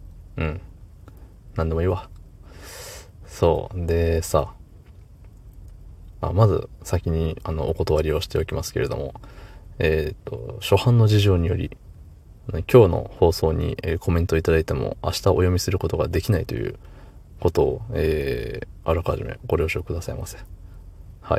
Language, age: Japanese, 20-39